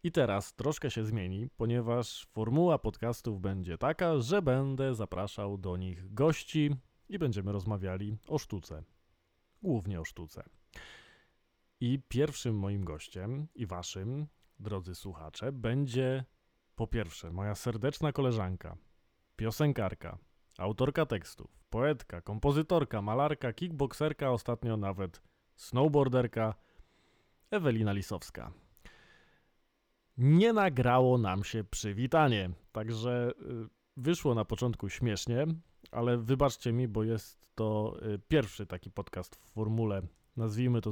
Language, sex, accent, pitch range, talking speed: Polish, male, native, 100-130 Hz, 105 wpm